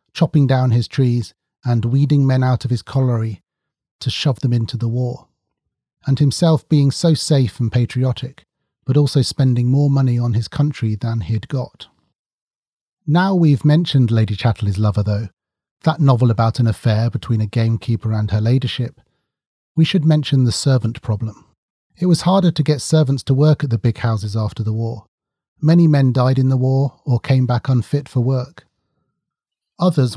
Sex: male